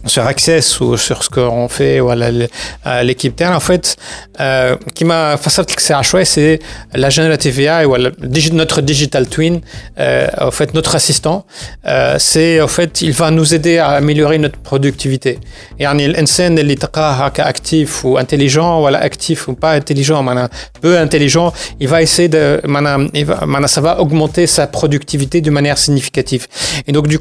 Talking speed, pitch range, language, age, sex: 185 wpm, 135-160 Hz, Arabic, 30-49, male